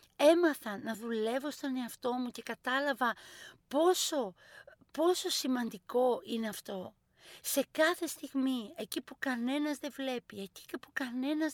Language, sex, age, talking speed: Greek, female, 50-69, 125 wpm